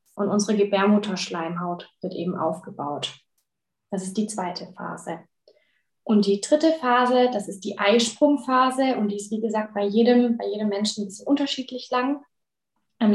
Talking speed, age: 155 wpm, 20-39